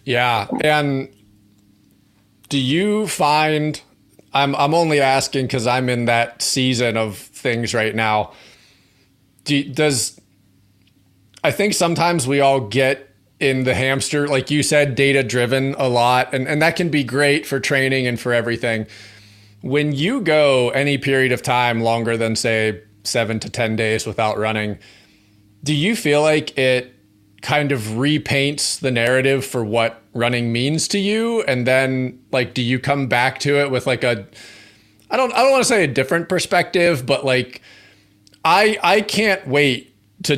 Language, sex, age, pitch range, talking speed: English, male, 30-49, 115-150 Hz, 160 wpm